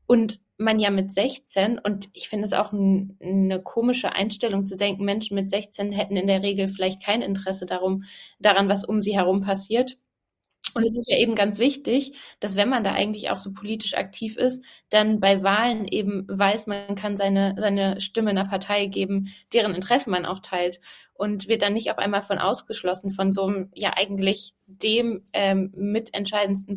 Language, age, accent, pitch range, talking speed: German, 20-39, German, 190-210 Hz, 185 wpm